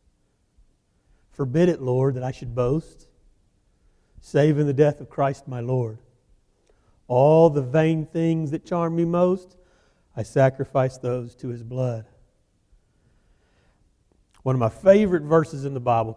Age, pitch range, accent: 40-59, 110-150 Hz, American